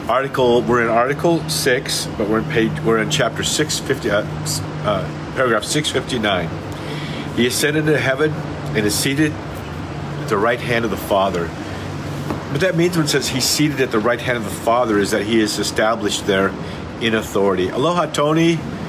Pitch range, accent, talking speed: 105-140 Hz, American, 180 wpm